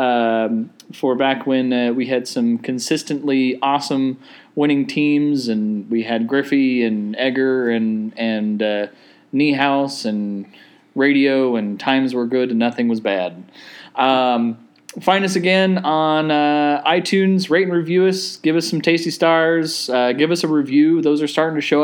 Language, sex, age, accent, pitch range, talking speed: English, male, 20-39, American, 130-170 Hz, 160 wpm